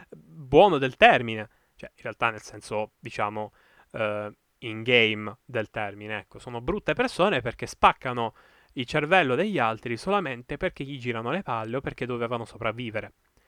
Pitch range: 115-160 Hz